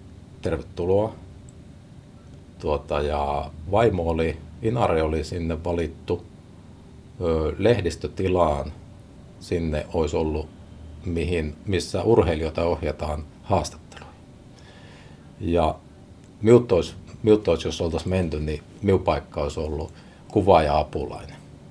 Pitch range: 75-95 Hz